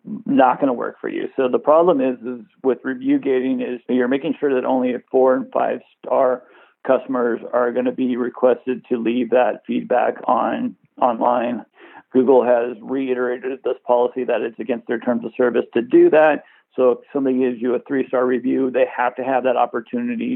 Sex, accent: male, American